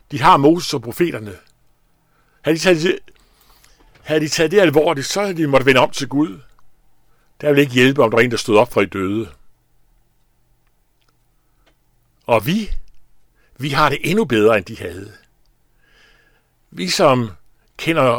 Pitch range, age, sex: 120-155 Hz, 60-79, male